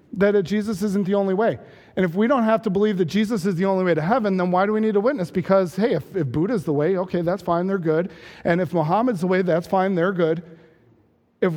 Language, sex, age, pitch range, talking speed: English, male, 40-59, 160-200 Hz, 260 wpm